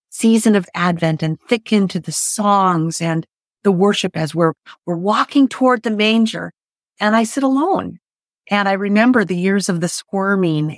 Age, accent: 40-59, American